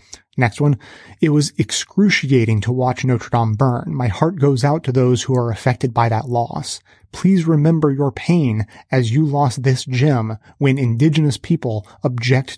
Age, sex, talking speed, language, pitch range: 30-49, male, 165 wpm, English, 125-150 Hz